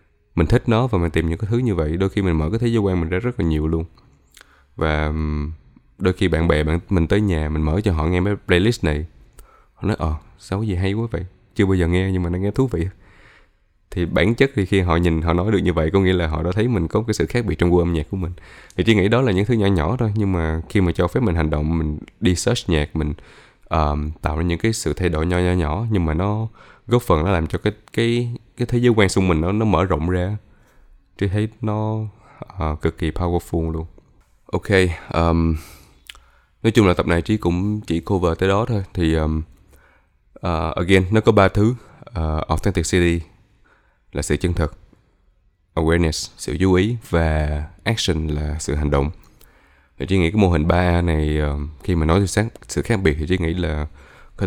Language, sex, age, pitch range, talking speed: Vietnamese, male, 20-39, 80-105 Hz, 235 wpm